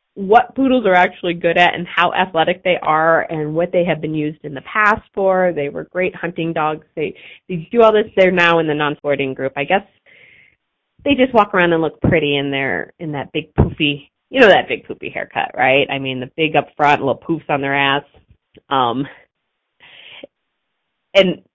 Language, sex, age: English, female, 30-49